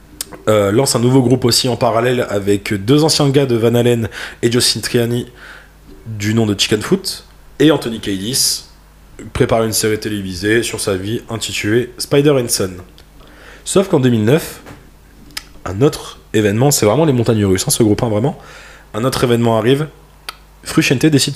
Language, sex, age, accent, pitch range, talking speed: French, male, 20-39, French, 105-130 Hz, 165 wpm